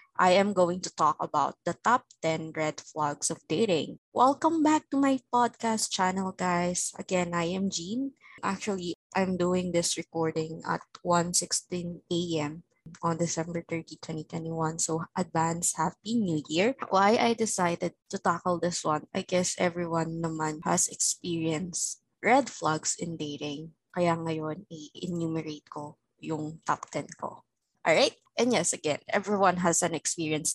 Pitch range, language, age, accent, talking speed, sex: 155-185 Hz, Filipino, 20-39, native, 145 wpm, female